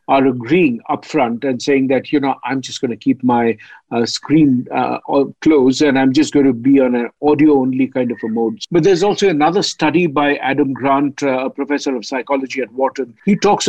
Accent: Indian